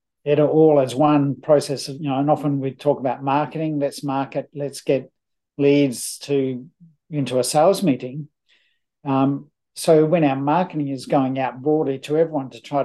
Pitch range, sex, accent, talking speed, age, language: 135-150 Hz, male, Australian, 170 wpm, 50-69, English